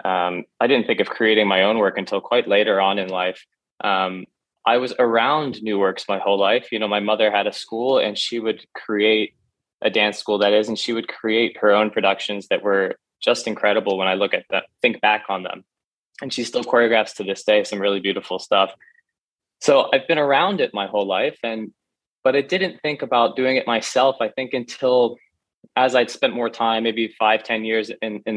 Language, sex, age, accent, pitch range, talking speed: English, male, 20-39, American, 105-120 Hz, 215 wpm